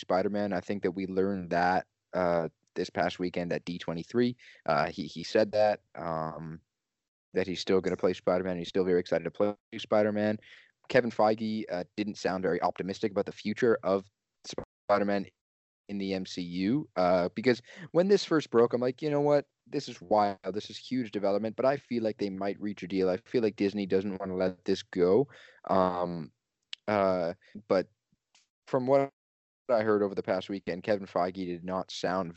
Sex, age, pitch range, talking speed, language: male, 20-39, 90-110 Hz, 190 wpm, English